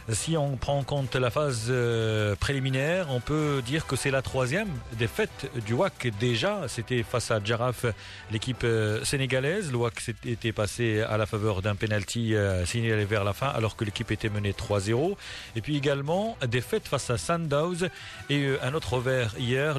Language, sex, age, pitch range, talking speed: Arabic, male, 40-59, 110-140 Hz, 170 wpm